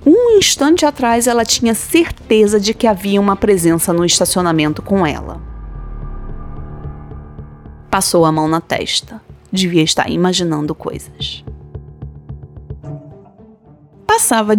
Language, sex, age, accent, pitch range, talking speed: Portuguese, female, 20-39, Brazilian, 165-225 Hz, 105 wpm